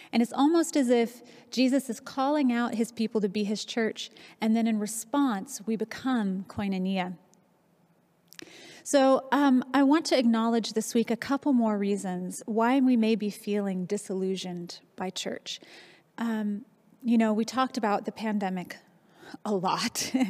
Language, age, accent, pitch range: English, 30-49, American, 200-235 Hz